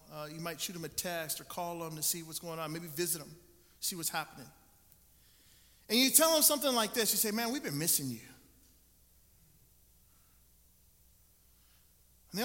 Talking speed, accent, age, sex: 180 wpm, American, 30-49, male